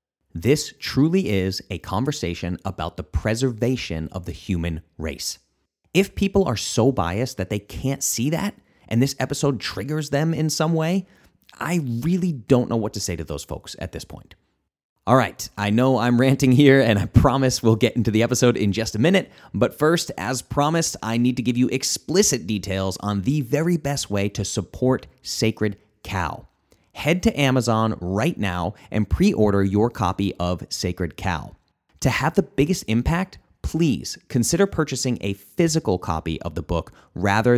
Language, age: English, 30-49